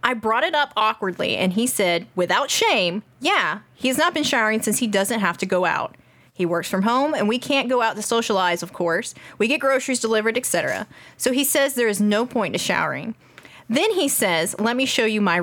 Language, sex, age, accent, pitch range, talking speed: English, female, 30-49, American, 210-305 Hz, 225 wpm